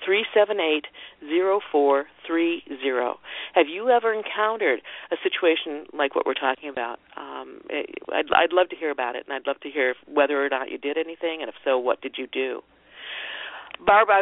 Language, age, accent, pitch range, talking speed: English, 50-69, American, 140-180 Hz, 190 wpm